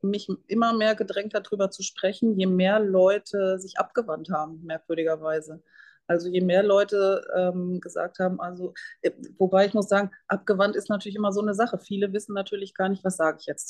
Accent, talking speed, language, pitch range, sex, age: German, 190 wpm, German, 185-210 Hz, female, 30-49